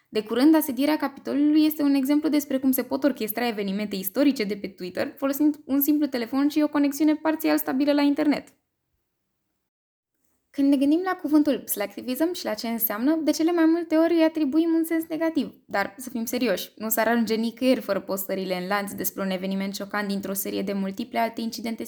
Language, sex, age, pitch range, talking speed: Romanian, female, 10-29, 210-290 Hz, 190 wpm